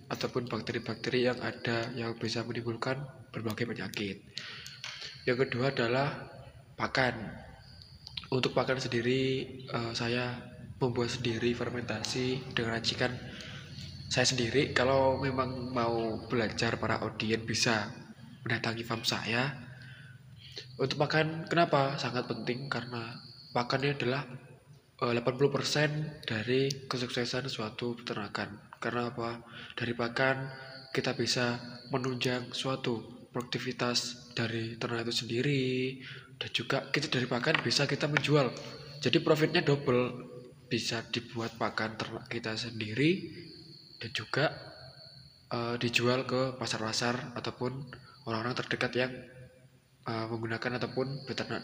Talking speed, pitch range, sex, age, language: 105 wpm, 115-130 Hz, male, 20-39, Indonesian